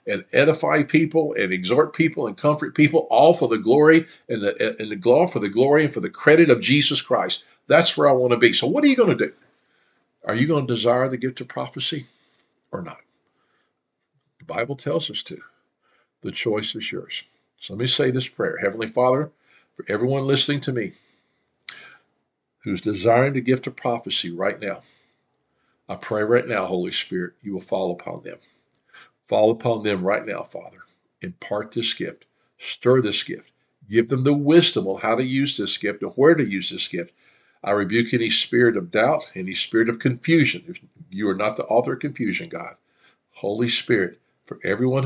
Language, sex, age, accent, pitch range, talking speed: English, male, 50-69, American, 115-145 Hz, 190 wpm